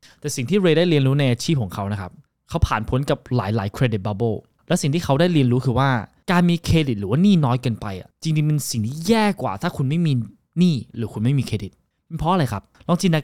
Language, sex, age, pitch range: Thai, male, 20-39, 115-165 Hz